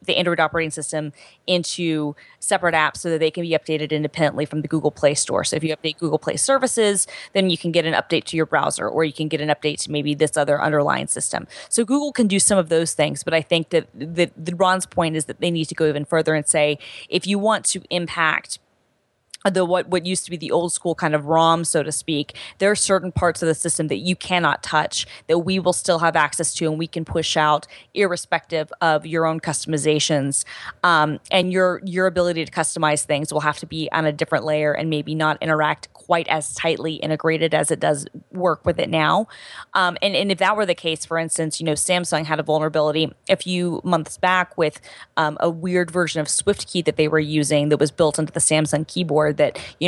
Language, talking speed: English, 230 wpm